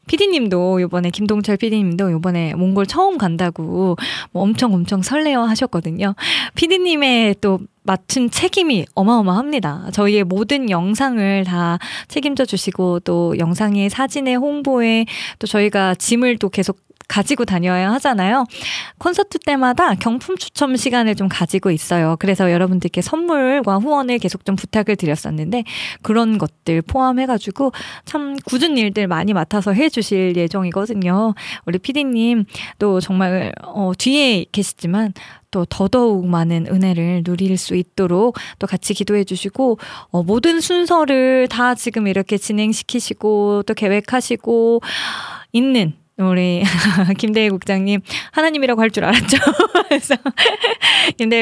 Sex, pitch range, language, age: female, 185-250 Hz, Korean, 20-39